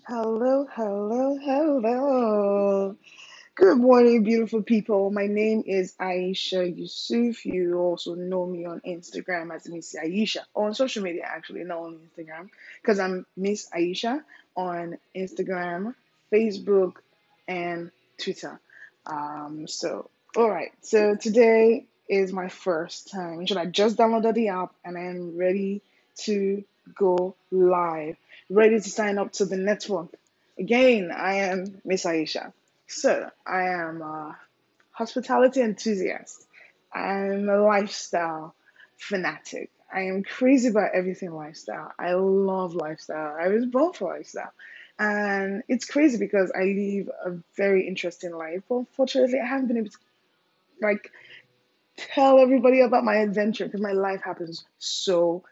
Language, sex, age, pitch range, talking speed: English, female, 20-39, 180-225 Hz, 135 wpm